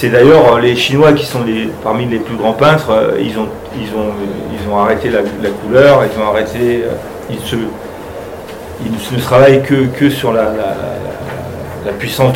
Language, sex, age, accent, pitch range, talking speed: French, male, 40-59, French, 110-140 Hz, 195 wpm